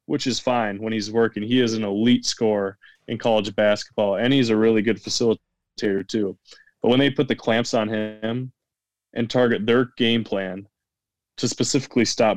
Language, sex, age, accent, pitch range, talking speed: English, male, 20-39, American, 105-120 Hz, 180 wpm